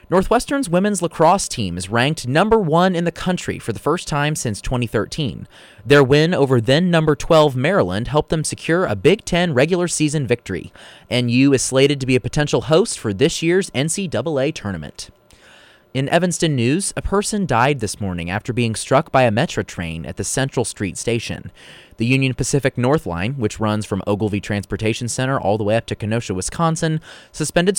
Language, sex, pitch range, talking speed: English, male, 110-170 Hz, 185 wpm